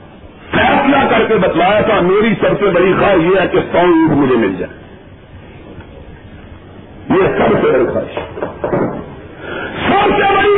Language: Urdu